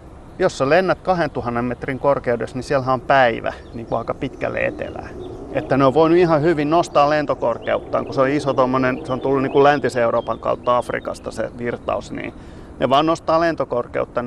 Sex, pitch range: male, 115-135 Hz